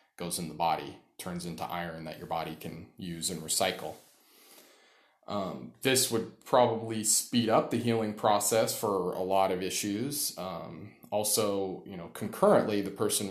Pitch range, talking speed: 85-100 Hz, 160 wpm